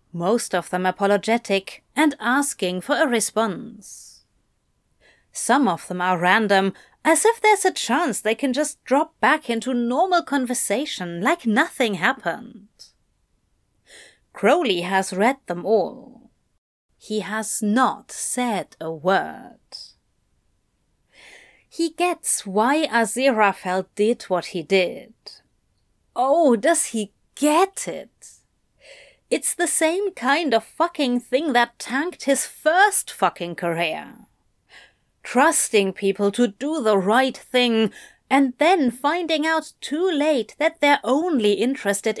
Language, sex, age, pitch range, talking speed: English, female, 30-49, 205-300 Hz, 120 wpm